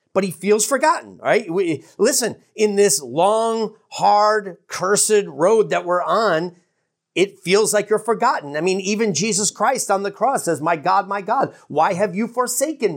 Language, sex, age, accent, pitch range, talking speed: English, male, 40-59, American, 190-240 Hz, 175 wpm